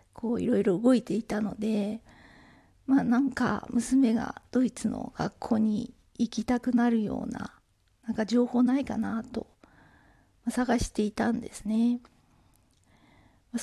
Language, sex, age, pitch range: Japanese, female, 40-59, 215-255 Hz